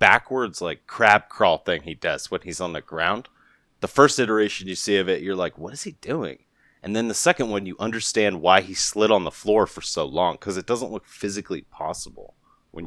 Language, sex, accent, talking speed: English, male, American, 225 wpm